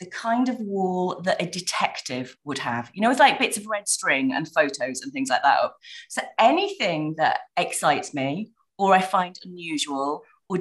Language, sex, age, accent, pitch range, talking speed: English, female, 30-49, British, 155-235 Hz, 190 wpm